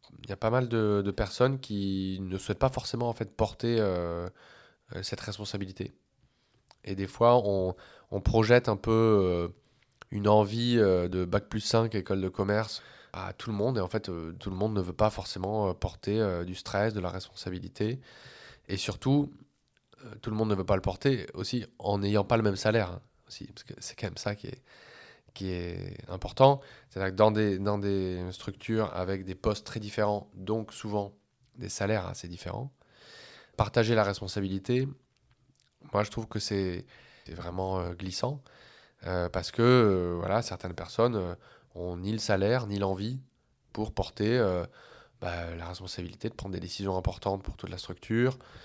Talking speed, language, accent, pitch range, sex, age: 185 wpm, French, French, 95-115 Hz, male, 20-39